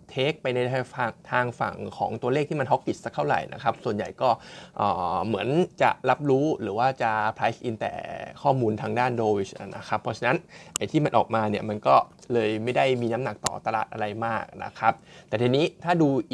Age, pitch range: 20-39, 115-135 Hz